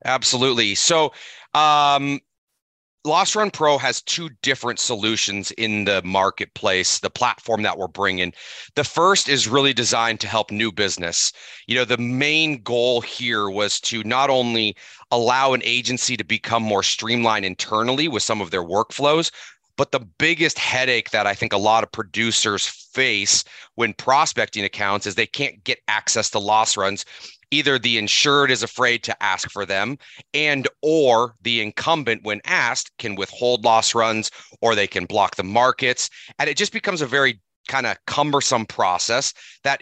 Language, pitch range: English, 110-140 Hz